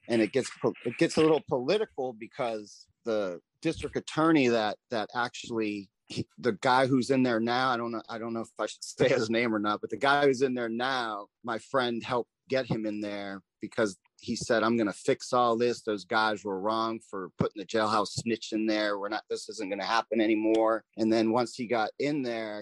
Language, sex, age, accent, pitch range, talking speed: English, male, 30-49, American, 105-125 Hz, 220 wpm